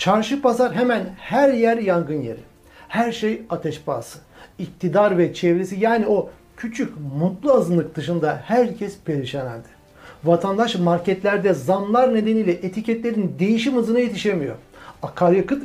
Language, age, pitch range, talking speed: Turkish, 60-79, 160-230 Hz, 125 wpm